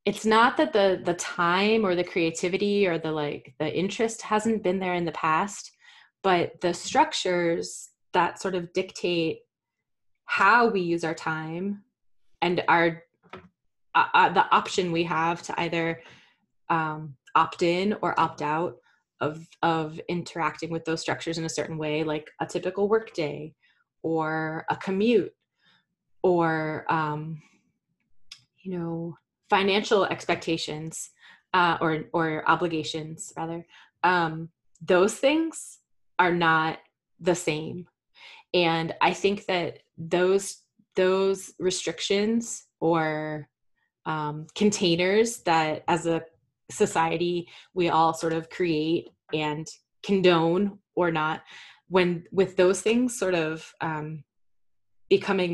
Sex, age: female, 20-39